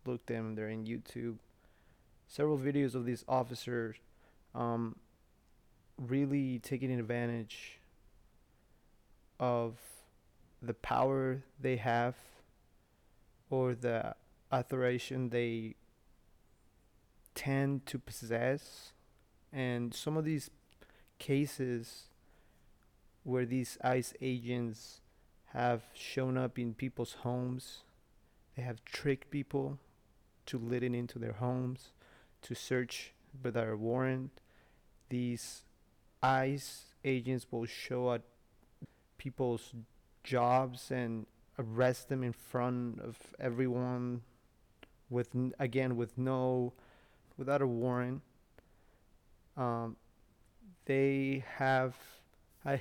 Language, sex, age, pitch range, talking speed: English, male, 30-49, 115-130 Hz, 95 wpm